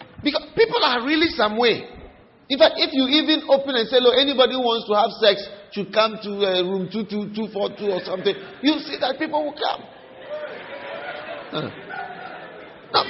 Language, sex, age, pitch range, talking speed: English, male, 50-69, 240-325 Hz, 170 wpm